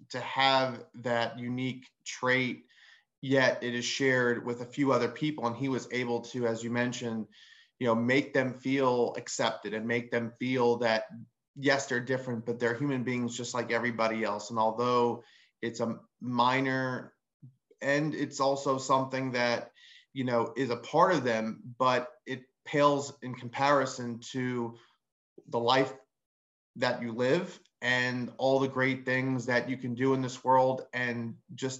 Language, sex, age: English, male, 30-49